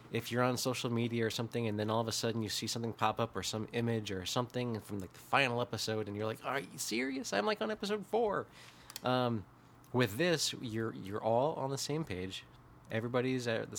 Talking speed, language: 220 wpm, English